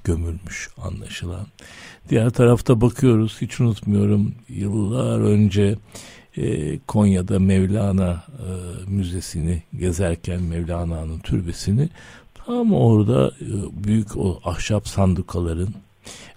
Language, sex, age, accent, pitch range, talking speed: Turkish, male, 60-79, native, 90-120 Hz, 90 wpm